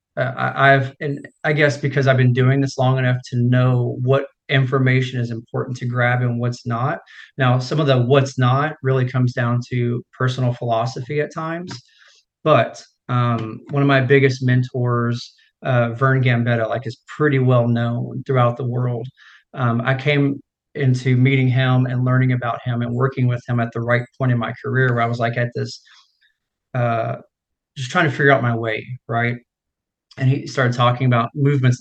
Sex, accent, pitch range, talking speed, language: male, American, 120-135 Hz, 185 wpm, English